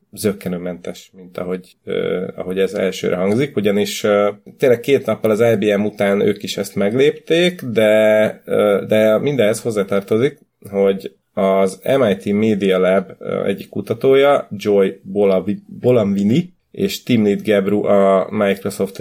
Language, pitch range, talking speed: Hungarian, 95-115 Hz, 130 wpm